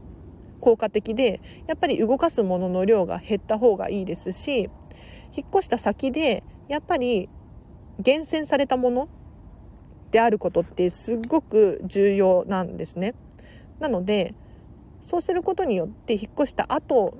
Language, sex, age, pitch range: Japanese, female, 40-59, 195-275 Hz